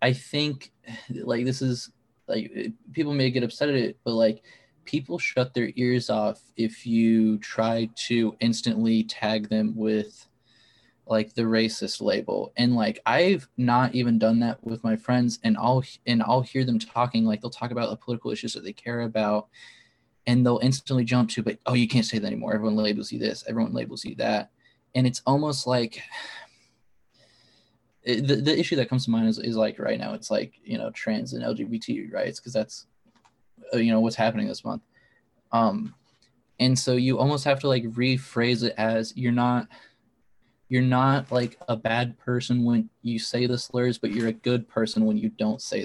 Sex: male